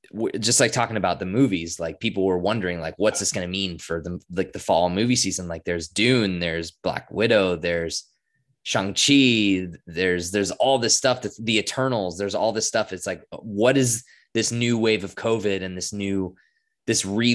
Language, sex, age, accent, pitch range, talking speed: English, male, 20-39, American, 100-125 Hz, 185 wpm